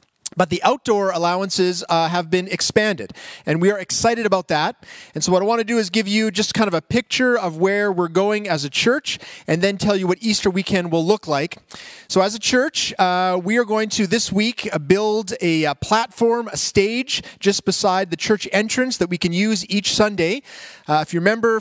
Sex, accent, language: male, American, English